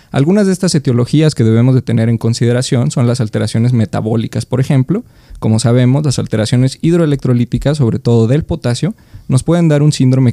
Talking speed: 175 wpm